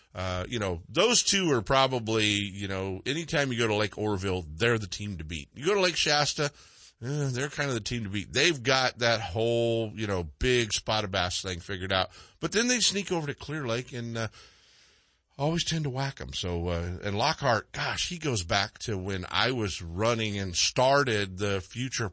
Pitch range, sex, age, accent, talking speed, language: 95-130 Hz, male, 50-69, American, 210 wpm, English